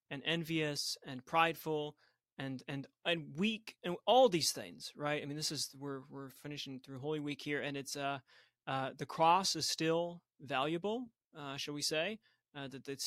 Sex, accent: male, American